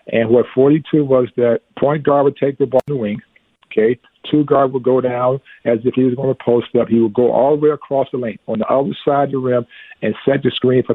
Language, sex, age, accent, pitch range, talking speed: English, male, 50-69, American, 120-140 Hz, 270 wpm